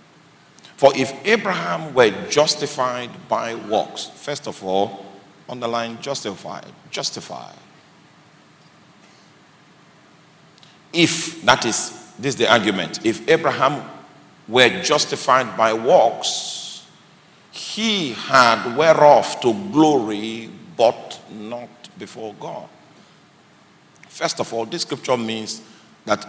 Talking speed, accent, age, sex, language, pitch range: 95 wpm, Nigerian, 50-69, male, English, 110-150 Hz